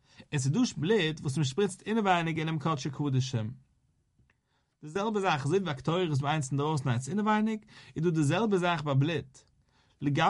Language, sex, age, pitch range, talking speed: English, male, 40-59, 130-180 Hz, 70 wpm